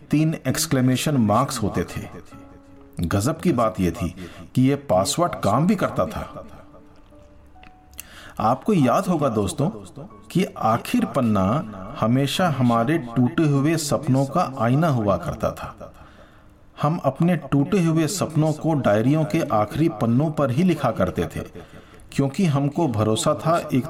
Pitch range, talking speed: 100-150 Hz, 135 wpm